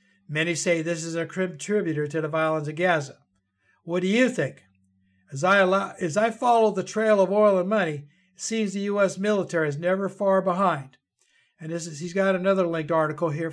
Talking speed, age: 180 wpm, 60-79